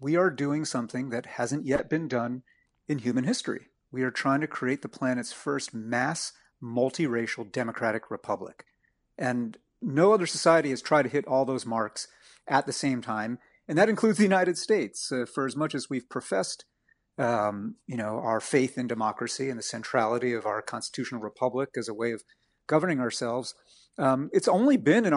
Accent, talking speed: American, 185 wpm